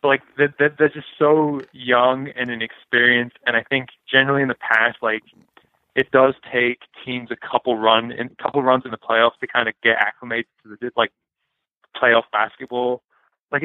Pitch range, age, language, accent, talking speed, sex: 115-130 Hz, 20-39, English, American, 170 wpm, male